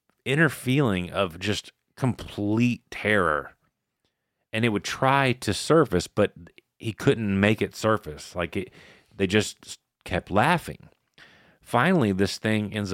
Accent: American